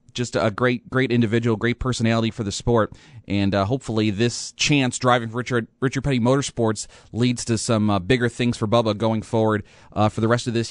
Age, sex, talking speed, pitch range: 30-49, male, 200 wpm, 110-140 Hz